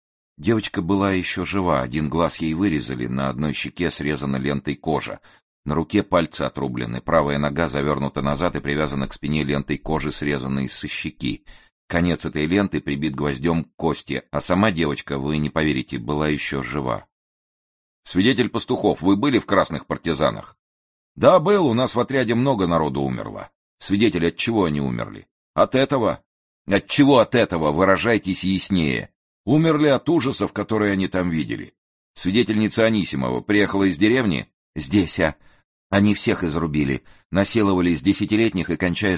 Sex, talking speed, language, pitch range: male, 150 wpm, Russian, 75-100 Hz